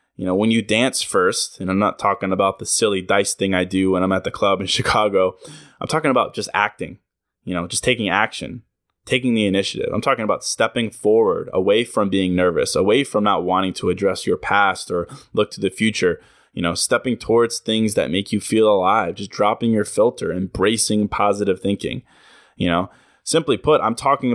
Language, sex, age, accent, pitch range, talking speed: English, male, 20-39, American, 95-120 Hz, 200 wpm